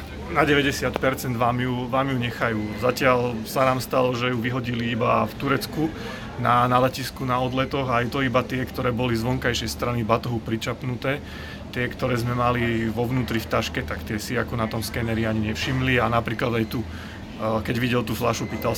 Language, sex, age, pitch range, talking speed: Slovak, male, 30-49, 110-125 Hz, 190 wpm